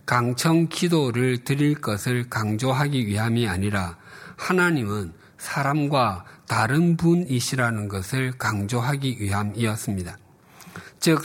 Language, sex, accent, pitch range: Korean, male, native, 105-145 Hz